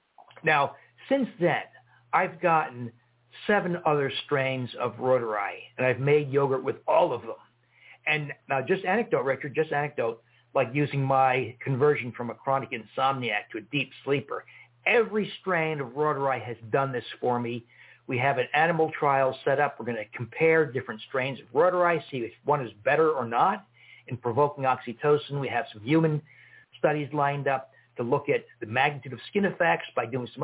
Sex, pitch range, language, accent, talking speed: male, 125-160 Hz, English, American, 175 wpm